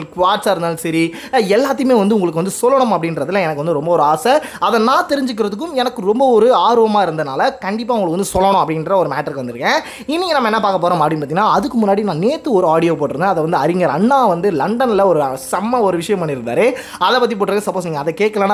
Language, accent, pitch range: Tamil, native, 175-240 Hz